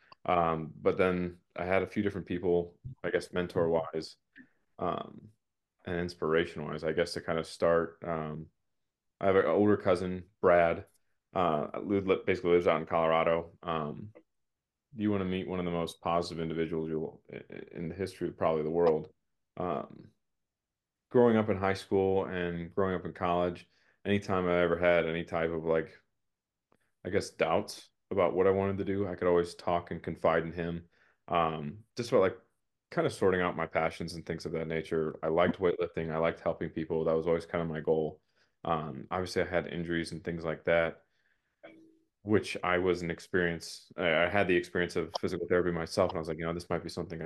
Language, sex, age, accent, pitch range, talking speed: English, male, 20-39, American, 80-95 Hz, 195 wpm